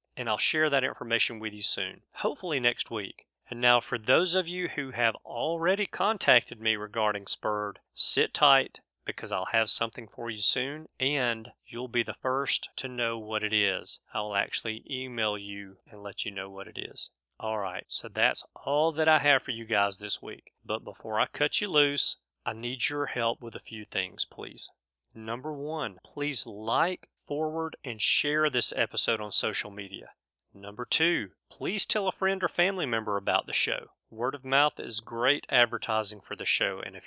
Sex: male